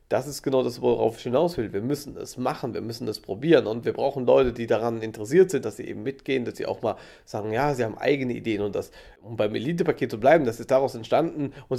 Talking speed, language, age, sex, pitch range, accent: 255 wpm, German, 40-59, male, 120-145 Hz, German